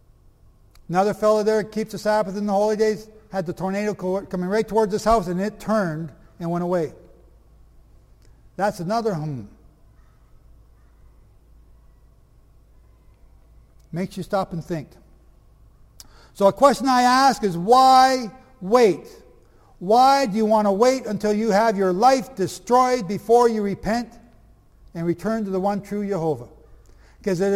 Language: English